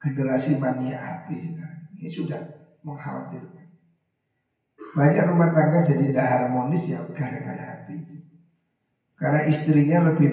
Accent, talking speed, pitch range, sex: native, 100 wpm, 140-165 Hz, male